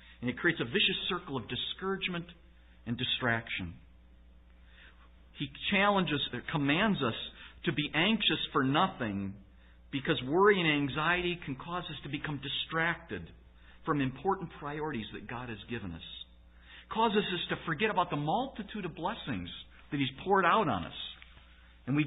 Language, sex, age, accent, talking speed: English, male, 50-69, American, 150 wpm